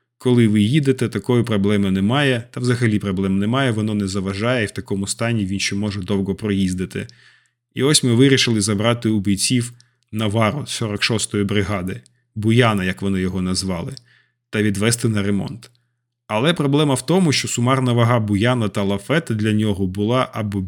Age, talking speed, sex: 20-39, 160 wpm, male